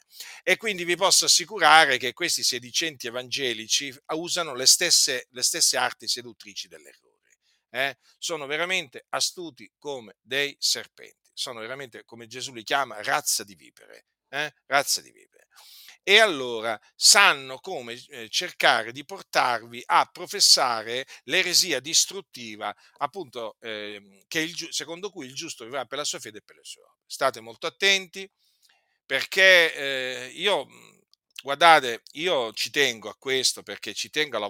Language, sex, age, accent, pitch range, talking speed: Italian, male, 50-69, native, 120-185 Hz, 145 wpm